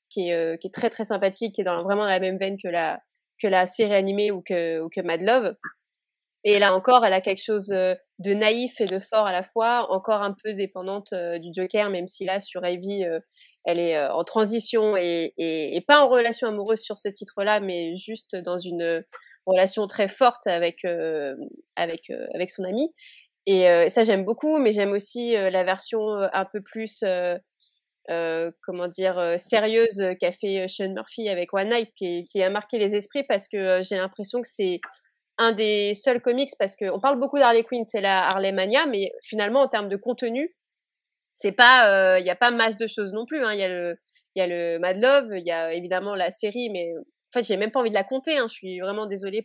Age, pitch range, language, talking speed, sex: 20-39, 185-225 Hz, French, 225 wpm, female